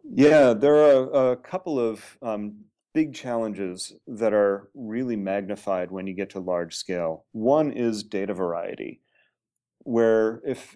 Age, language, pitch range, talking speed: 30-49, English, 95-115 Hz, 140 wpm